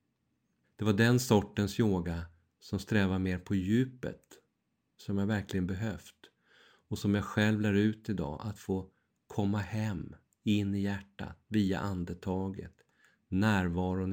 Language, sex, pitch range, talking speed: Swedish, male, 90-110 Hz, 130 wpm